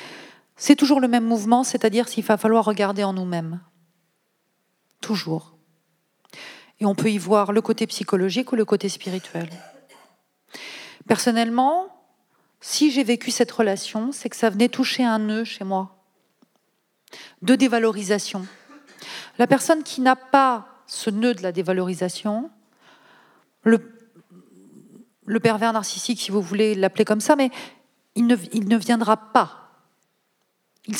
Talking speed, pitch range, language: 135 wpm, 195-245 Hz, French